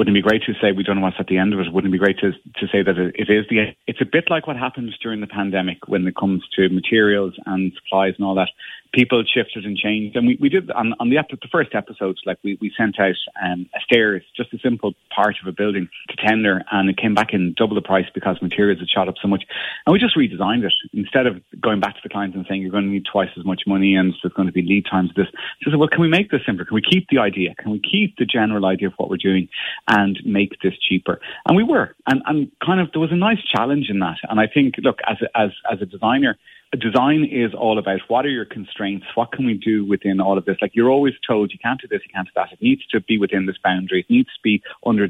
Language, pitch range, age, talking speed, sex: English, 95-120 Hz, 30-49, 290 wpm, male